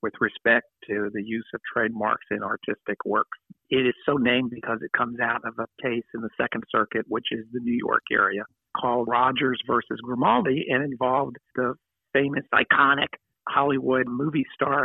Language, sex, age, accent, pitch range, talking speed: English, male, 50-69, American, 125-140 Hz, 175 wpm